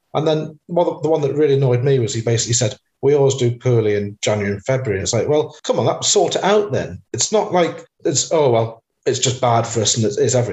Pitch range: 115-150 Hz